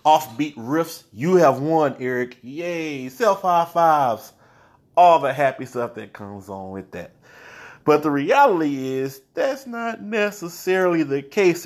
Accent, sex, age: American, male, 30-49